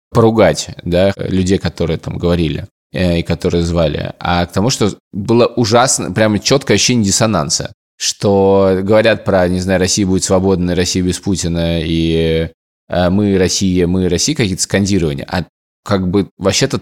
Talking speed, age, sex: 145 wpm, 20-39, male